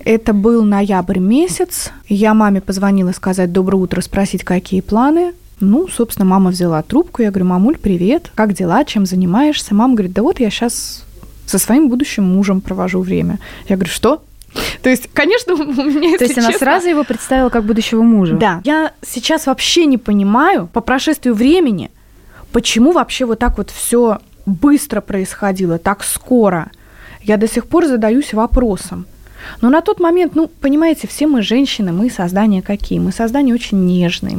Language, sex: Russian, female